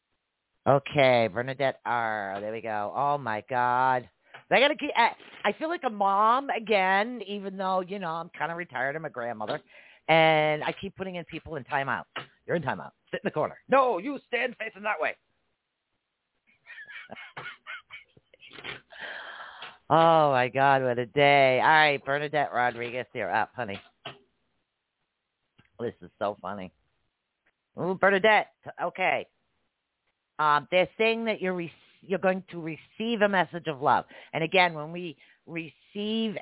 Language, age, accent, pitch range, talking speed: English, 50-69, American, 135-185 Hz, 150 wpm